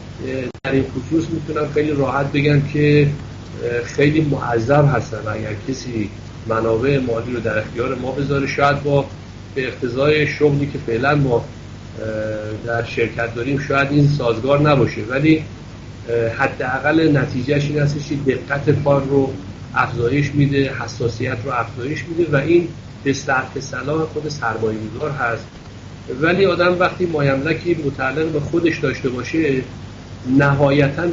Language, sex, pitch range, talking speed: Persian, male, 120-150 Hz, 130 wpm